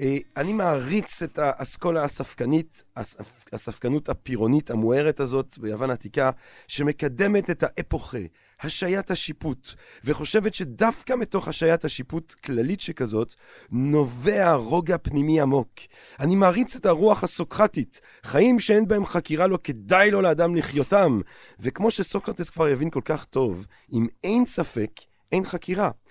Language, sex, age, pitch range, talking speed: Hebrew, male, 30-49, 130-185 Hz, 120 wpm